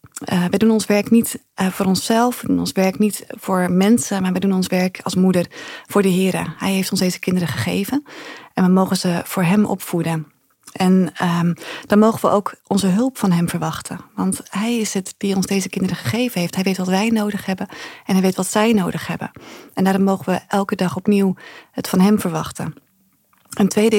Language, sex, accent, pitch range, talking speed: Dutch, female, Dutch, 180-210 Hz, 215 wpm